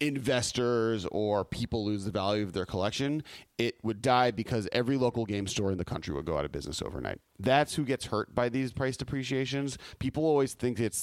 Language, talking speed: English, 205 wpm